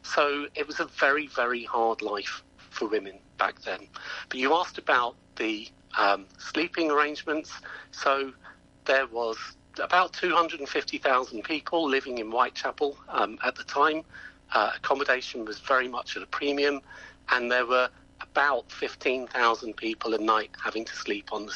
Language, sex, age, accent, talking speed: English, male, 40-59, British, 150 wpm